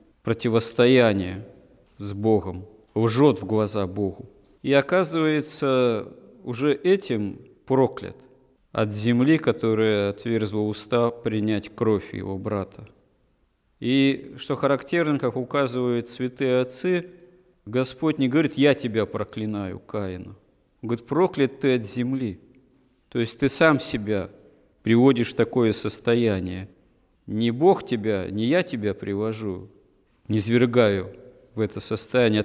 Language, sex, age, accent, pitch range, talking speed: Russian, male, 40-59, native, 110-135 Hz, 110 wpm